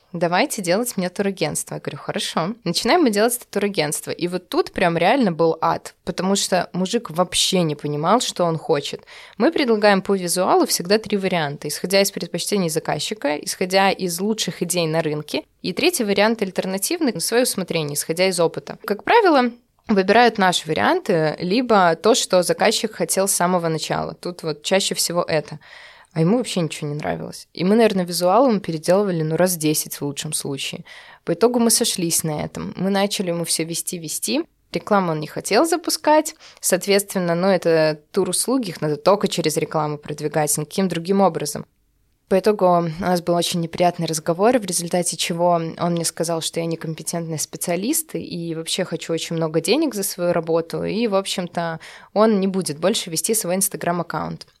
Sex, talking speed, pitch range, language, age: female, 170 wpm, 165-215 Hz, Russian, 20-39